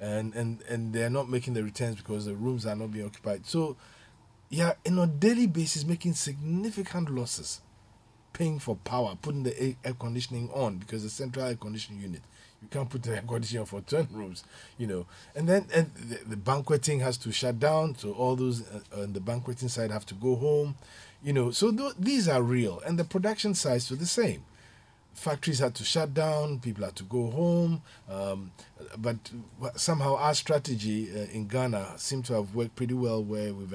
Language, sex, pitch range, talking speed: English, male, 110-150 Hz, 200 wpm